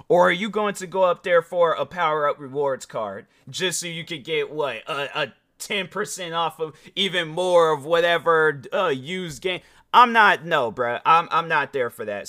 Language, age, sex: English, 30-49, male